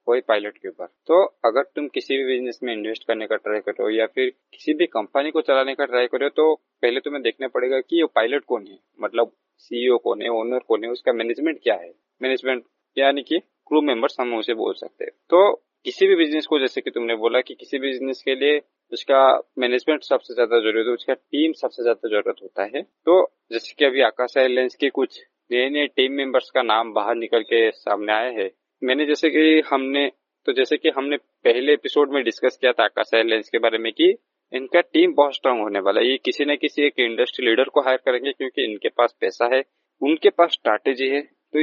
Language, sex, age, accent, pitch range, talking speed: Hindi, male, 20-39, native, 120-155 Hz, 220 wpm